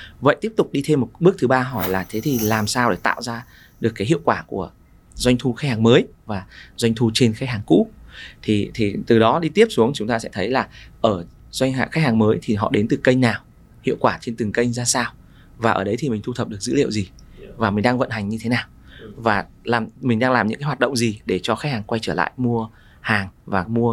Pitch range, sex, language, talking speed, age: 110-135 Hz, male, Vietnamese, 265 wpm, 20-39